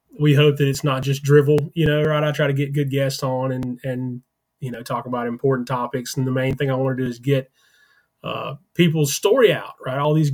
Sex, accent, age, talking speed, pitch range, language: male, American, 20-39, 245 wpm, 135-155 Hz, English